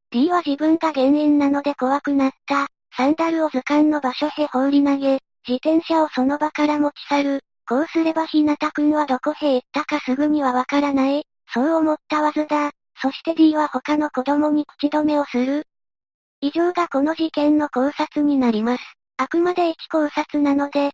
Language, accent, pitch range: Japanese, American, 275-305 Hz